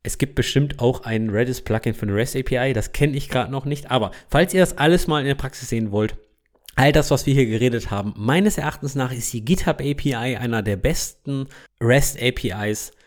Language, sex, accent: German, male, German